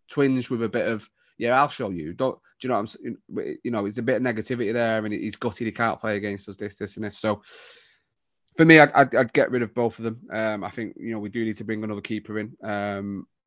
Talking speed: 270 wpm